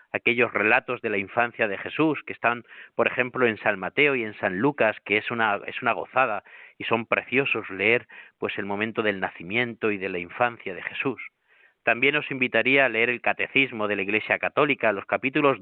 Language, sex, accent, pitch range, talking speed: Spanish, male, Spanish, 100-120 Hz, 200 wpm